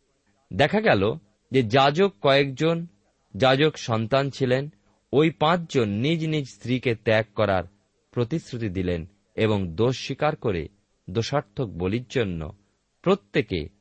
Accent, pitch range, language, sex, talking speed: native, 100-140 Hz, Bengali, male, 105 wpm